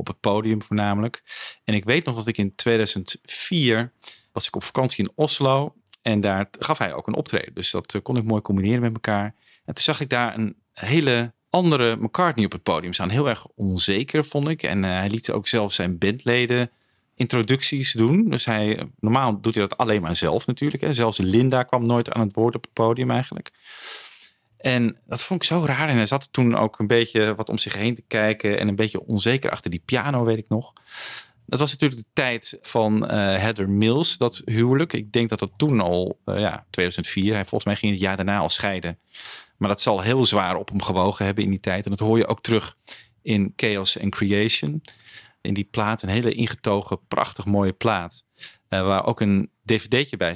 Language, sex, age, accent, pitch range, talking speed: Dutch, male, 40-59, Dutch, 100-120 Hz, 210 wpm